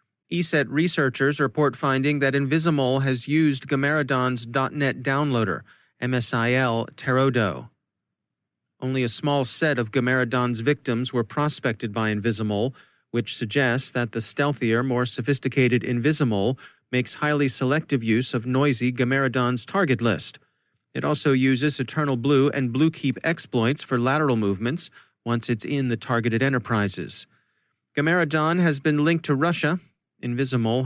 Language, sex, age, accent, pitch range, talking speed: English, male, 30-49, American, 120-145 Hz, 125 wpm